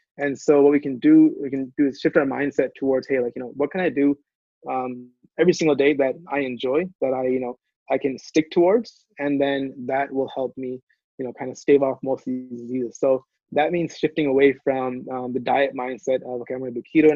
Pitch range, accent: 130-145 Hz, American